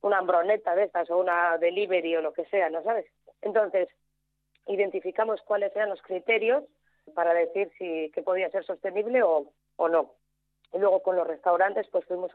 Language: Spanish